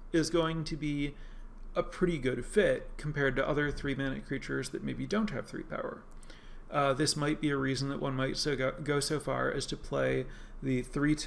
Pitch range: 135-175 Hz